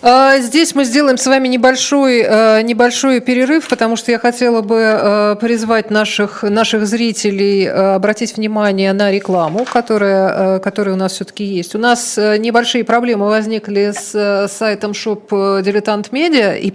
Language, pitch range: Russian, 195-240 Hz